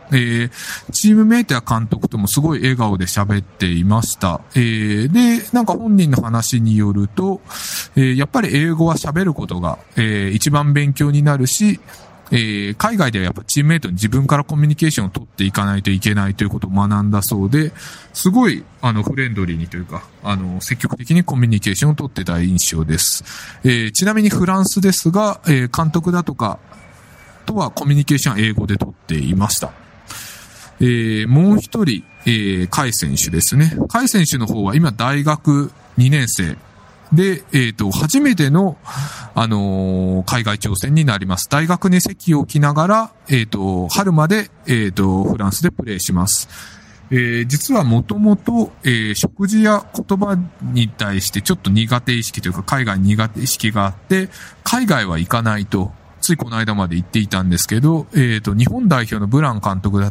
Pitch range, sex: 105-160 Hz, male